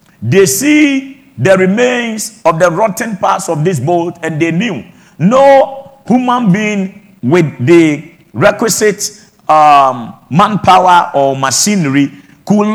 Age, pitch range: 50-69, 170-210 Hz